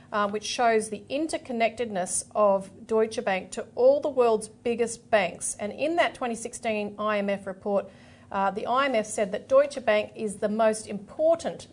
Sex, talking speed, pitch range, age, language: female, 160 wpm, 210-250 Hz, 40-59, English